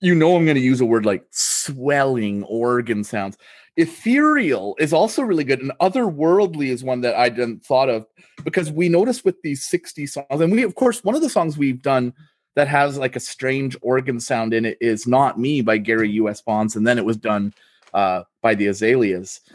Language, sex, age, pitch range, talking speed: English, male, 30-49, 115-160 Hz, 210 wpm